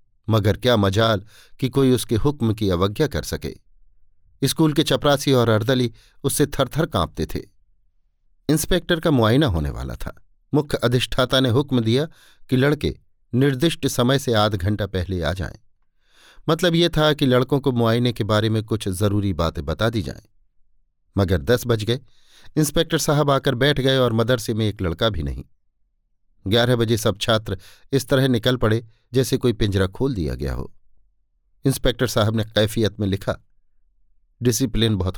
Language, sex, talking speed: Hindi, male, 165 wpm